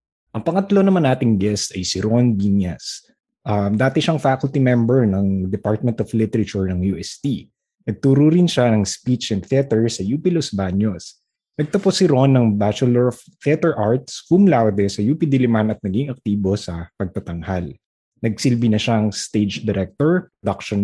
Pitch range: 100-135 Hz